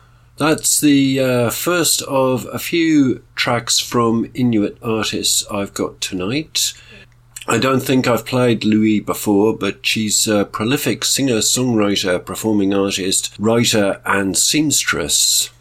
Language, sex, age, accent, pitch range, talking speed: English, male, 50-69, British, 105-130 Hz, 125 wpm